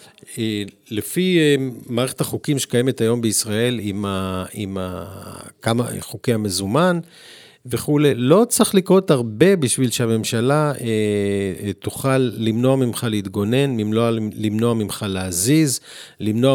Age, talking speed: 50-69, 110 wpm